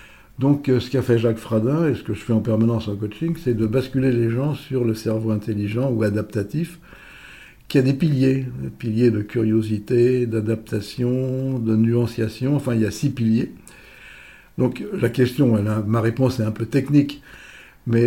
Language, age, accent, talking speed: French, 60-79, French, 185 wpm